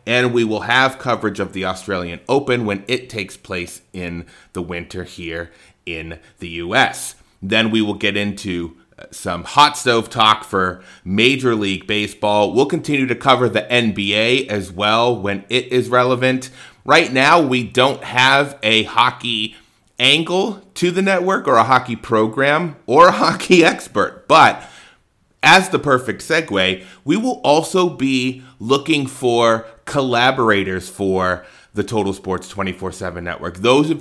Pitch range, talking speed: 100-130 Hz, 150 wpm